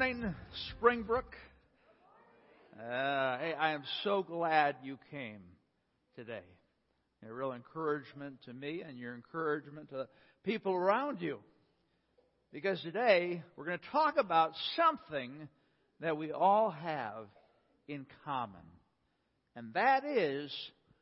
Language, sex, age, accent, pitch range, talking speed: English, male, 60-79, American, 135-200 Hz, 115 wpm